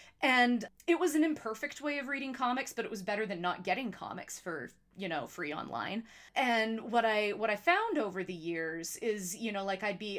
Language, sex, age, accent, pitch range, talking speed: English, female, 30-49, American, 175-220 Hz, 220 wpm